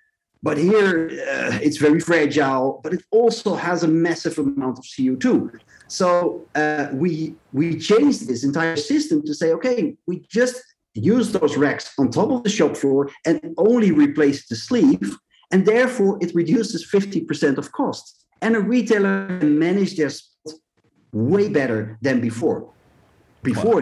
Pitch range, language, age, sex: 140-215 Hz, English, 50-69, male